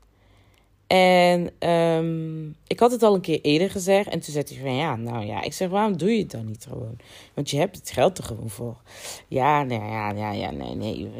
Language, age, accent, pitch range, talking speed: Dutch, 20-39, Dutch, 105-165 Hz, 225 wpm